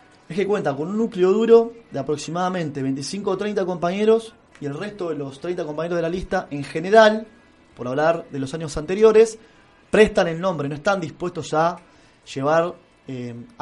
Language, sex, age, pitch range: Spanish, male, 20-39, 140-195 Hz